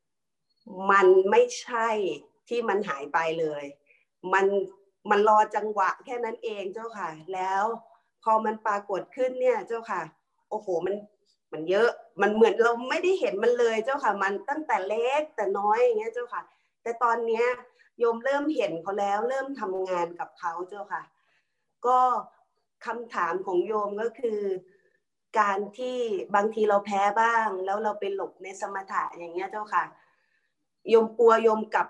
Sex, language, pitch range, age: female, Thai, 200-270 Hz, 20-39